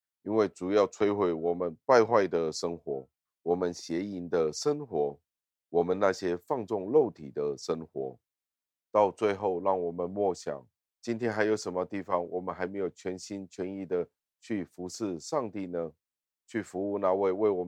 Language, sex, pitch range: Chinese, male, 75-95 Hz